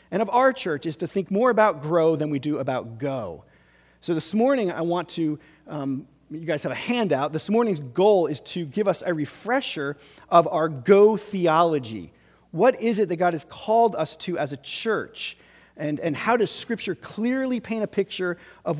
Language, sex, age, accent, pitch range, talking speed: English, male, 40-59, American, 145-185 Hz, 200 wpm